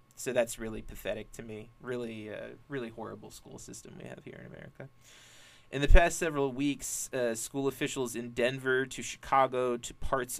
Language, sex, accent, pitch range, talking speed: English, male, American, 120-135 Hz, 180 wpm